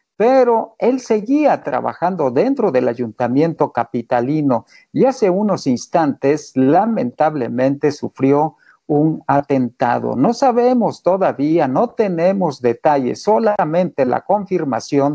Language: Spanish